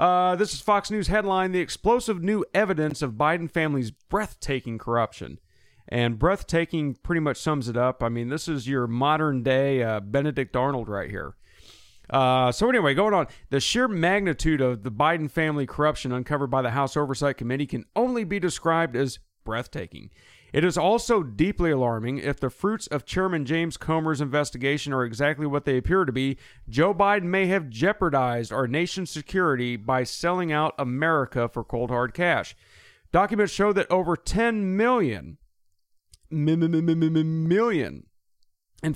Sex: male